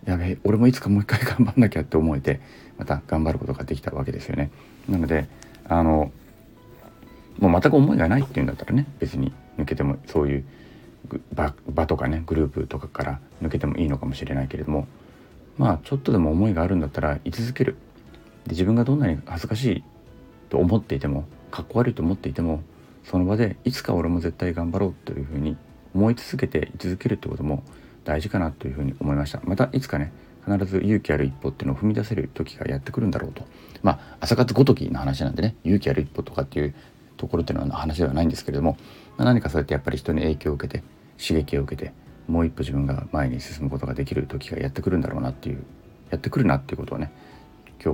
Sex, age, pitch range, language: male, 40-59, 70-105 Hz, Japanese